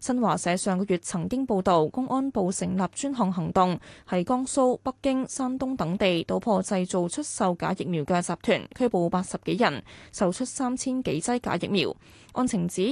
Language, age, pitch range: Chinese, 20-39, 180-245 Hz